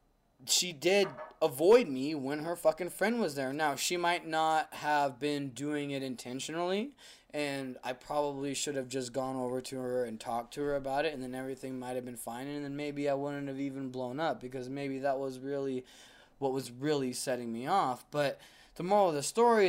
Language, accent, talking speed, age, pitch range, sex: English, American, 205 wpm, 20-39, 130-165 Hz, male